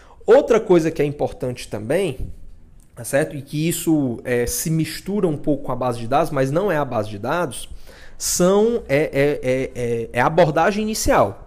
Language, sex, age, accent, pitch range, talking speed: Portuguese, male, 20-39, Brazilian, 130-180 Hz, 185 wpm